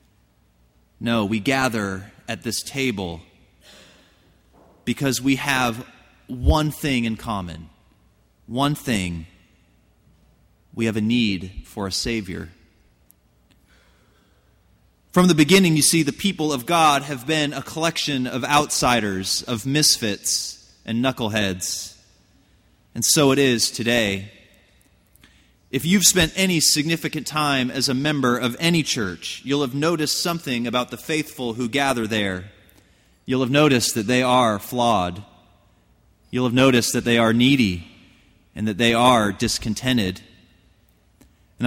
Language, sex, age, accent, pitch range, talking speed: English, male, 30-49, American, 105-145 Hz, 125 wpm